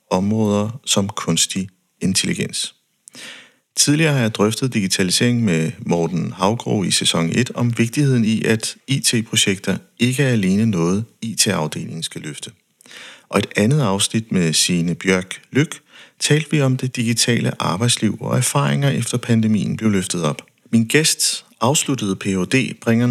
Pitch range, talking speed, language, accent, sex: 100-135 Hz, 140 wpm, Danish, native, male